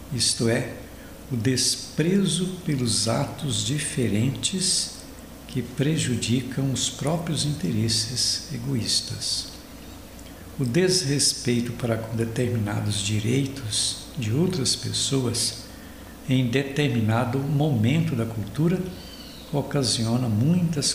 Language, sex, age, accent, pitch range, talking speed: Portuguese, male, 60-79, Brazilian, 115-155 Hz, 80 wpm